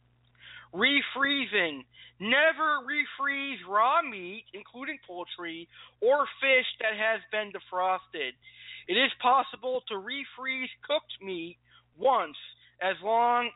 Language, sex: English, male